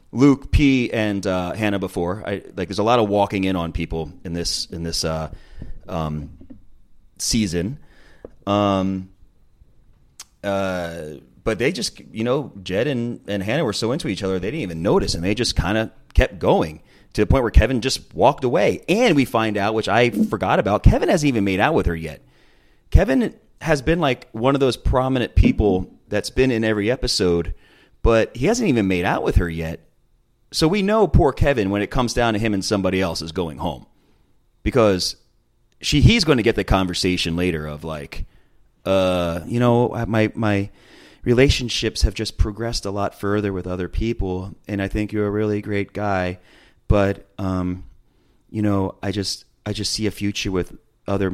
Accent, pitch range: American, 85-110 Hz